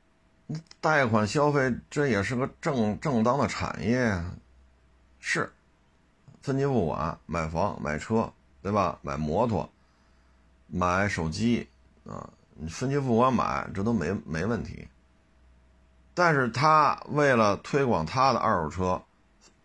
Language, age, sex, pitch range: Chinese, 50-69, male, 75-115 Hz